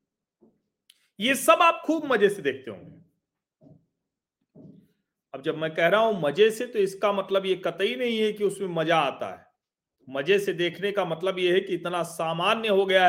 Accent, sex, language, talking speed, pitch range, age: native, male, Hindi, 185 wpm, 190-275 Hz, 40-59